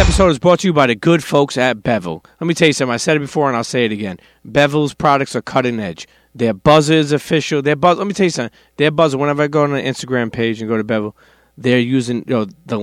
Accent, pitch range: American, 115-150 Hz